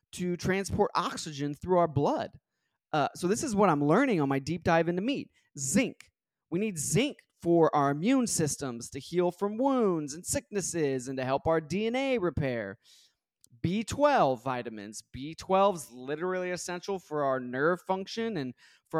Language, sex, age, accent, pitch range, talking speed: English, male, 20-39, American, 145-195 Hz, 160 wpm